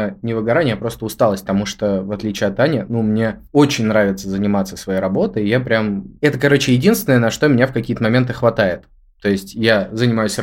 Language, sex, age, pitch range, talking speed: Russian, male, 20-39, 105-135 Hz, 195 wpm